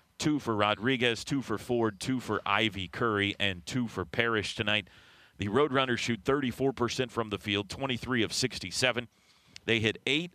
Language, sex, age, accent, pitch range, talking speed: English, male, 40-59, American, 100-145 Hz, 160 wpm